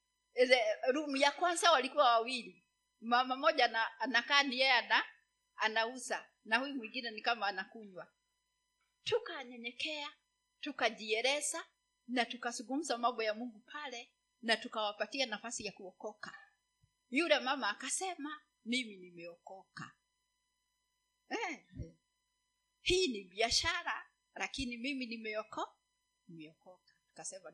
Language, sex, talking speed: Swahili, female, 100 wpm